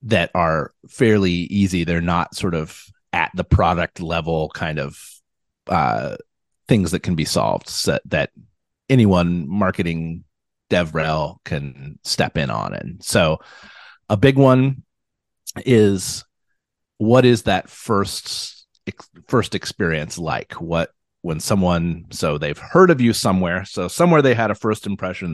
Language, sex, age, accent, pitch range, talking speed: English, male, 30-49, American, 85-120 Hz, 135 wpm